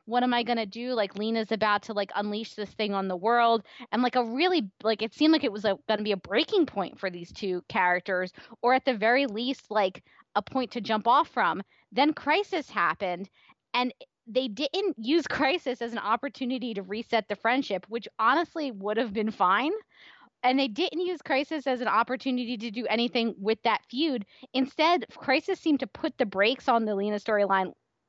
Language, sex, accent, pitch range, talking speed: English, female, American, 210-265 Hz, 205 wpm